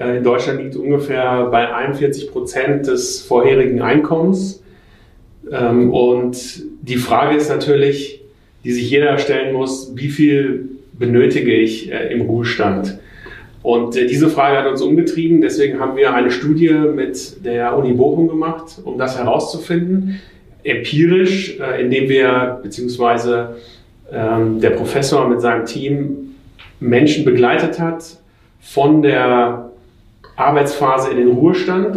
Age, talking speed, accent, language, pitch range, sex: 40-59, 120 wpm, German, German, 120-155 Hz, male